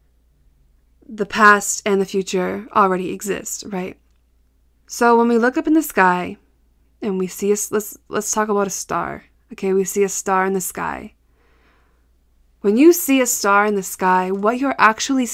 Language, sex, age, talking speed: English, female, 20-39, 175 wpm